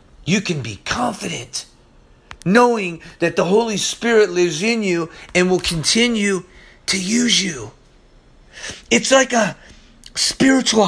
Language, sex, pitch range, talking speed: English, male, 180-250 Hz, 120 wpm